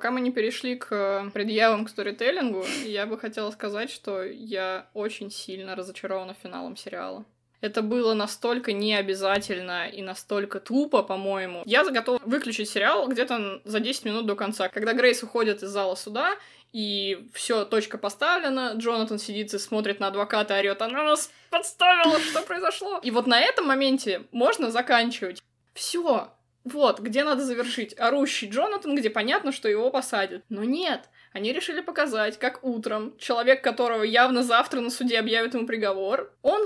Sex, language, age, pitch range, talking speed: female, Russian, 20-39, 205-265 Hz, 155 wpm